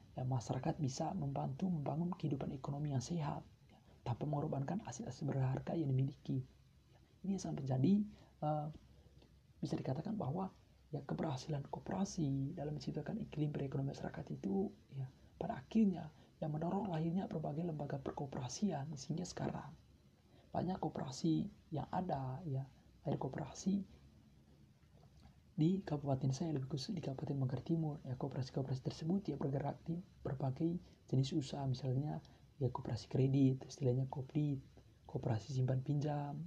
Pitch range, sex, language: 130-165 Hz, male, Indonesian